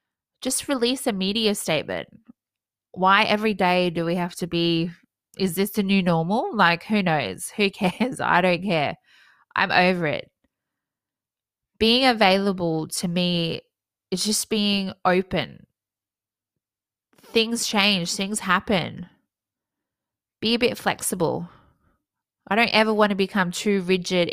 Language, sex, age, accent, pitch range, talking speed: English, female, 20-39, Australian, 170-210 Hz, 130 wpm